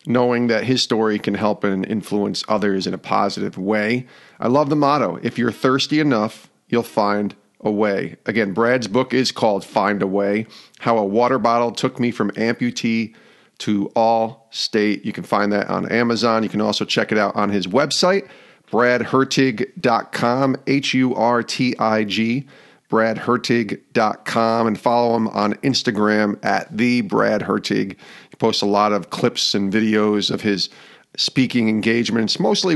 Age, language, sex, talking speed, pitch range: 40-59, English, male, 160 wpm, 110-125 Hz